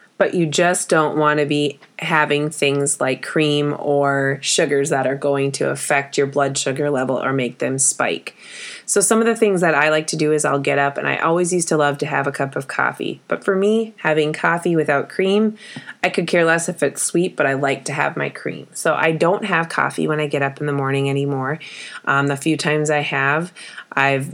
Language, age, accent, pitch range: English, 20-39, American, 140-165 Hz